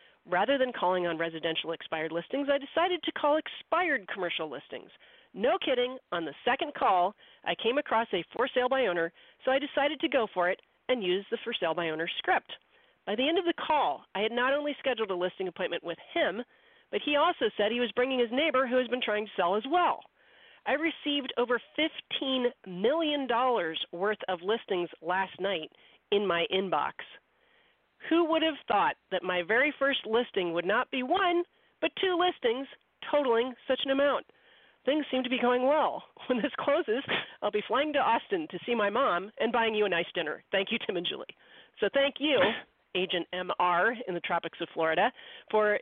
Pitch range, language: 185-280 Hz, English